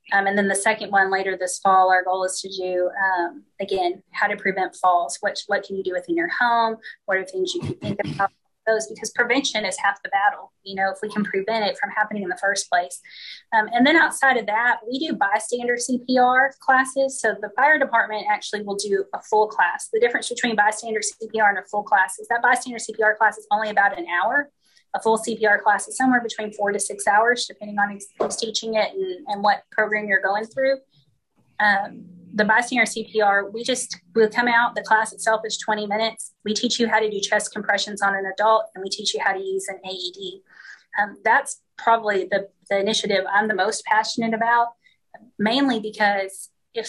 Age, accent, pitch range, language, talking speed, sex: 20-39, American, 200-230 Hz, English, 210 wpm, female